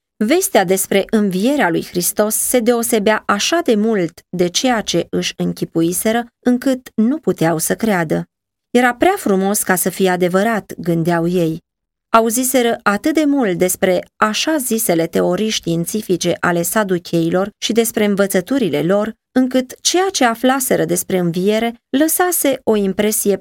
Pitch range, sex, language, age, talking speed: 175-230 Hz, female, Romanian, 20-39, 135 wpm